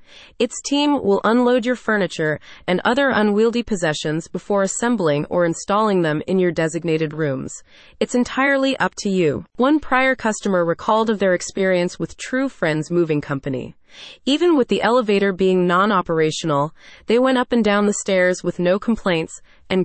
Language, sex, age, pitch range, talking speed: English, female, 30-49, 175-235 Hz, 160 wpm